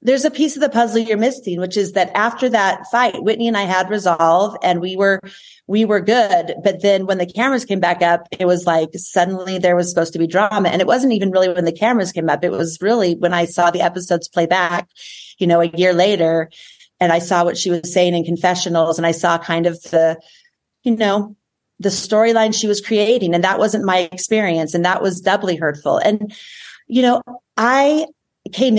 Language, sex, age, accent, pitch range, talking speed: English, female, 30-49, American, 175-220 Hz, 220 wpm